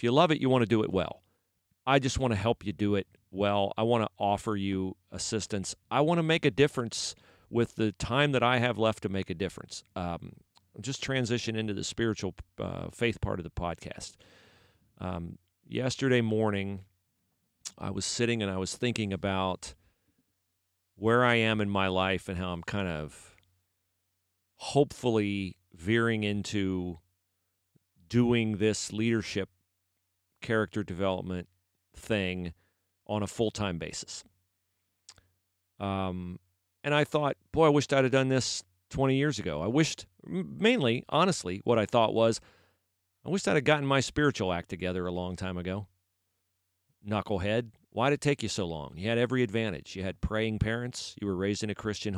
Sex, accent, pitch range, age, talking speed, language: male, American, 90-115 Hz, 40-59, 165 wpm, English